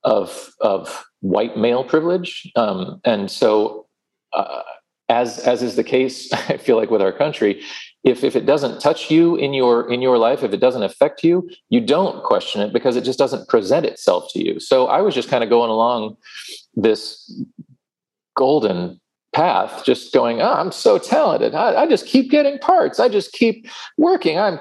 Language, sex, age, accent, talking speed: English, male, 40-59, American, 185 wpm